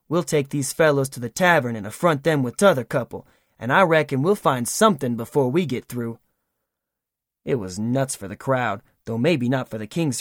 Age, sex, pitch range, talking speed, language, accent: 20-39, male, 120-175 Hz, 205 wpm, English, American